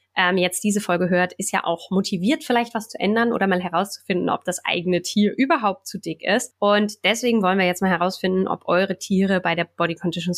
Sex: female